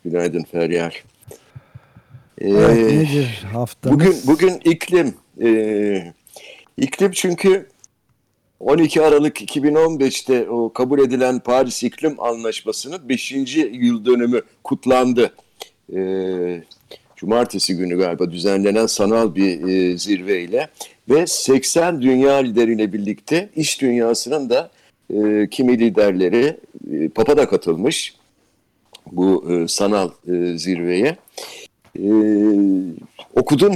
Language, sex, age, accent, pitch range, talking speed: Turkish, male, 60-79, native, 105-145 Hz, 90 wpm